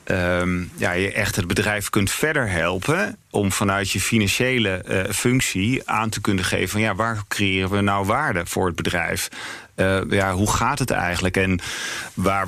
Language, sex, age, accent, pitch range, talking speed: English, male, 40-59, Dutch, 90-110 Hz, 180 wpm